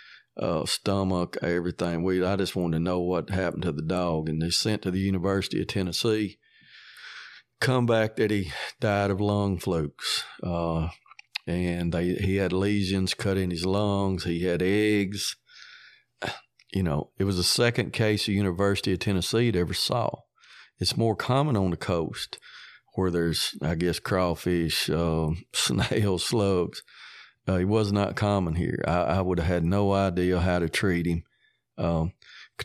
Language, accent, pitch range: English, American, 85-95 Hz